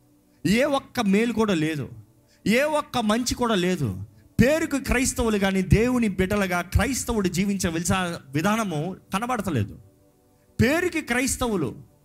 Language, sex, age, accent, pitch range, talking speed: Telugu, male, 30-49, native, 130-210 Hz, 105 wpm